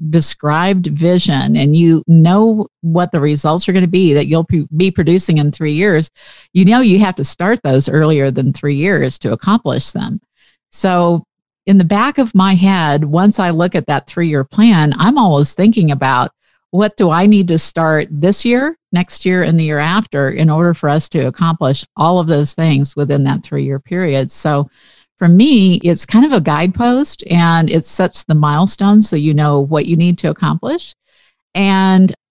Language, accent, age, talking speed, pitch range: English, American, 50-69, 190 wpm, 155-195 Hz